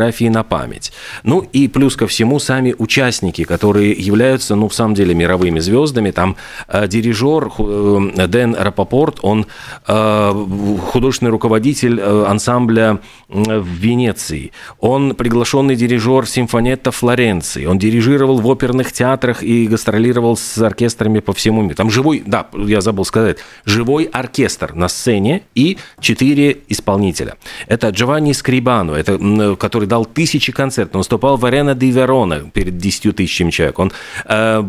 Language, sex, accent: Russian, male, native